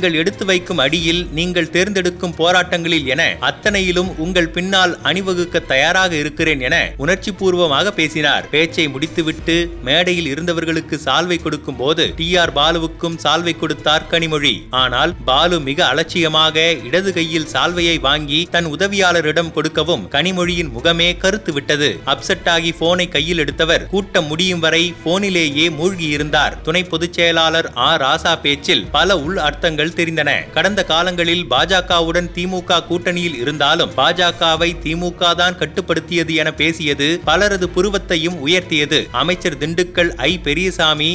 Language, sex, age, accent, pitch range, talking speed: Tamil, male, 30-49, native, 160-180 Hz, 120 wpm